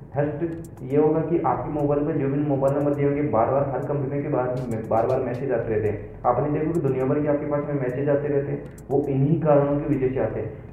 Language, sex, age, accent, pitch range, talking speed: Hindi, male, 30-49, native, 130-150 Hz, 130 wpm